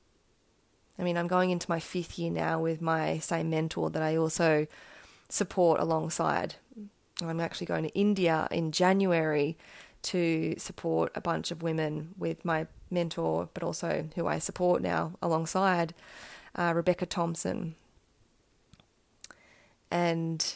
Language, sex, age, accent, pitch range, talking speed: English, female, 20-39, Australian, 160-180 Hz, 130 wpm